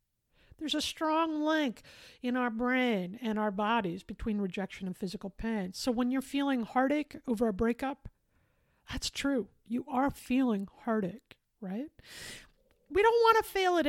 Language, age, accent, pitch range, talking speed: English, 50-69, American, 210-275 Hz, 155 wpm